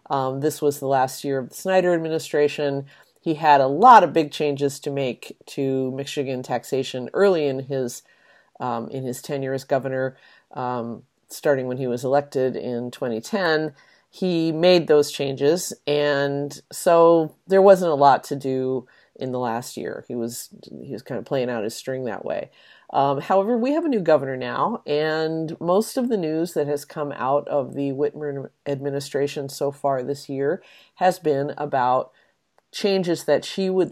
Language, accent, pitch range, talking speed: English, American, 130-165 Hz, 175 wpm